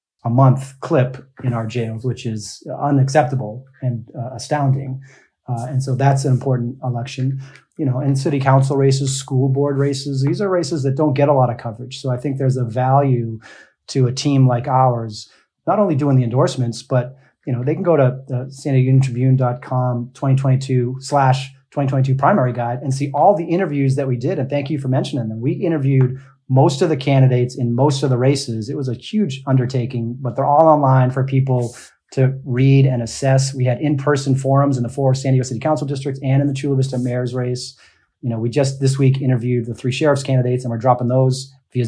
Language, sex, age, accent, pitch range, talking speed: English, male, 30-49, American, 125-140 Hz, 205 wpm